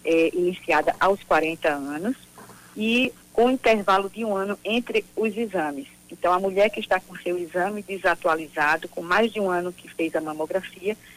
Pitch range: 170-210 Hz